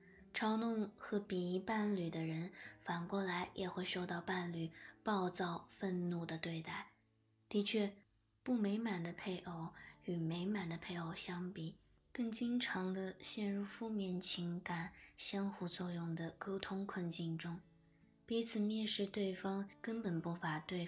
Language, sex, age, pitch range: Chinese, female, 20-39, 170-205 Hz